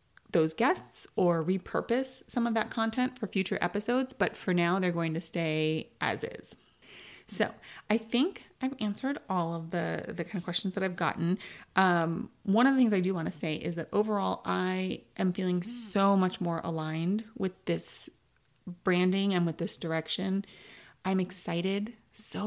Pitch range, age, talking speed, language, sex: 170-205 Hz, 30-49, 175 wpm, English, female